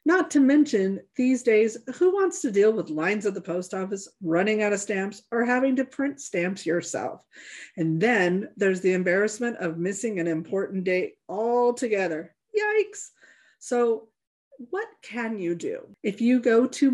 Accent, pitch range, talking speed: American, 190-255 Hz, 165 wpm